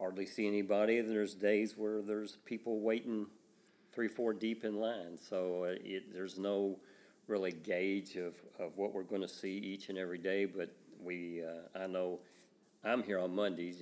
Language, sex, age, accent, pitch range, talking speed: English, male, 50-69, American, 90-110 Hz, 170 wpm